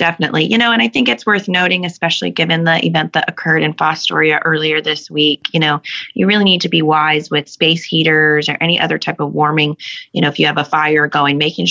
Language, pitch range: English, 150-170 Hz